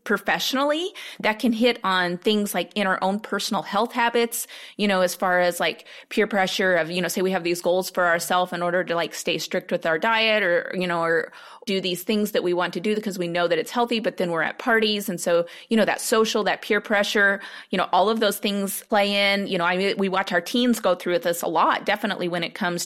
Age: 30-49